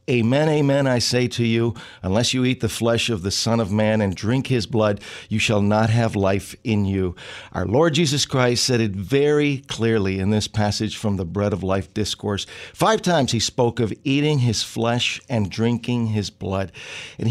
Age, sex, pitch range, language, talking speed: 50-69, male, 105-125 Hz, English, 200 wpm